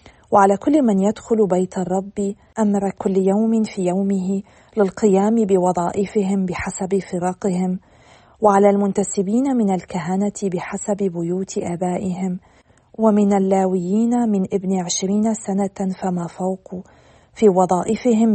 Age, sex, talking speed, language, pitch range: 40-59, female, 105 wpm, Arabic, 185-205 Hz